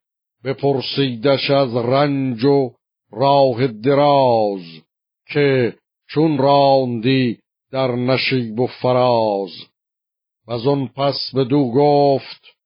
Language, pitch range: Persian, 125-140 Hz